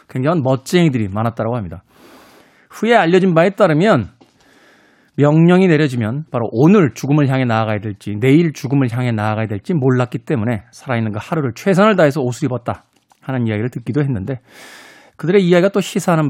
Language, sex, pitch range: Korean, male, 125-180 Hz